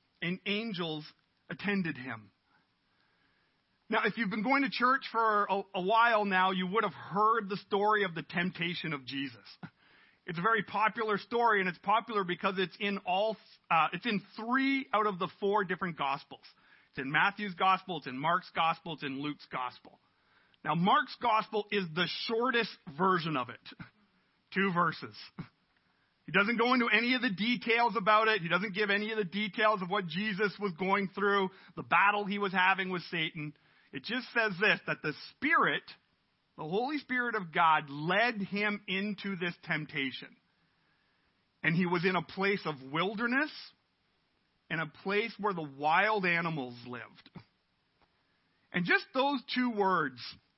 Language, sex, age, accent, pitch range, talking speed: English, male, 40-59, American, 165-215 Hz, 165 wpm